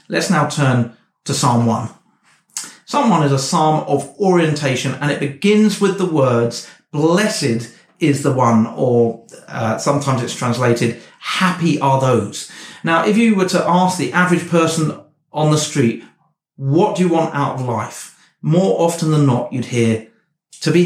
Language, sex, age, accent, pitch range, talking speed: English, male, 40-59, British, 140-180 Hz, 165 wpm